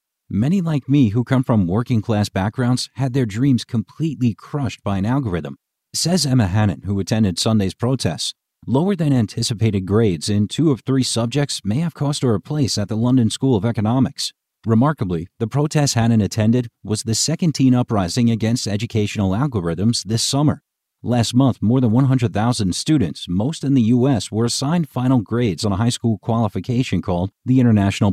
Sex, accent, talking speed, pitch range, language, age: male, American, 170 wpm, 100-130 Hz, English, 40-59